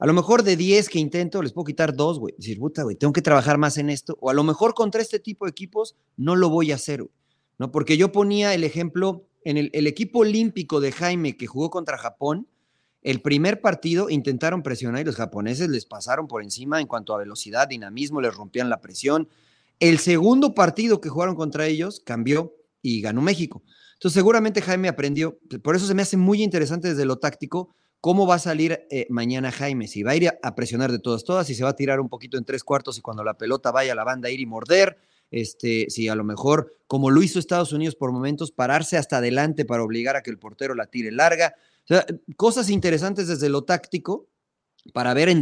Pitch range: 135-180 Hz